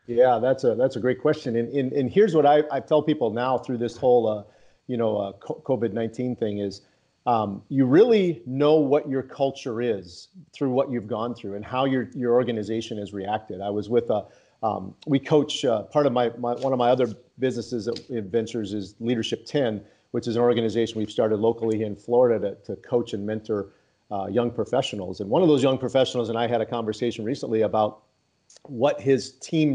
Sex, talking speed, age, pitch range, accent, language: male, 210 wpm, 40-59, 115-135 Hz, American, English